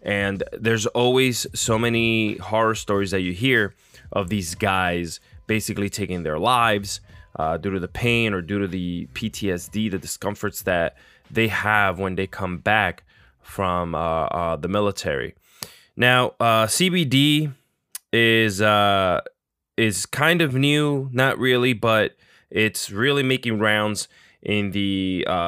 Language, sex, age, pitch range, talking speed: English, male, 20-39, 90-115 Hz, 140 wpm